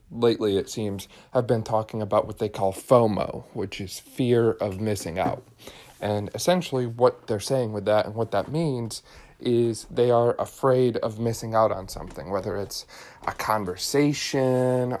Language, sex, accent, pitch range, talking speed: English, male, American, 105-125 Hz, 165 wpm